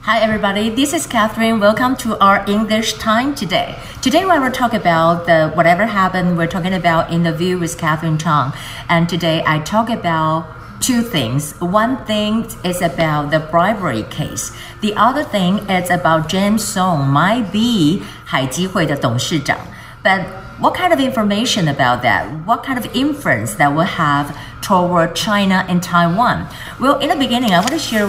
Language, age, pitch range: Chinese, 50-69, 160-220 Hz